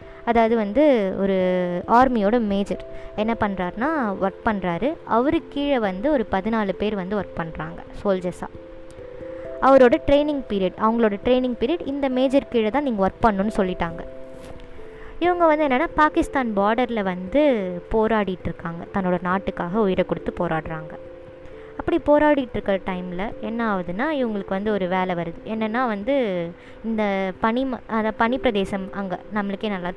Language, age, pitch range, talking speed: Tamil, 20-39, 185-250 Hz, 130 wpm